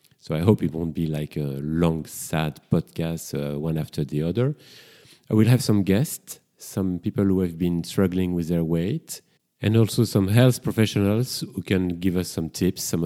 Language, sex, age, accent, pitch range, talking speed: English, male, 40-59, French, 90-110 Hz, 195 wpm